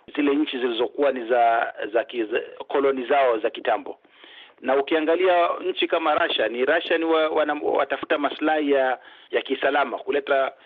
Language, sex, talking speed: Swahili, male, 165 wpm